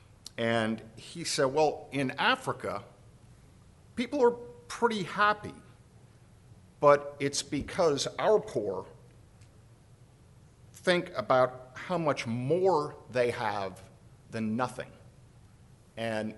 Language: English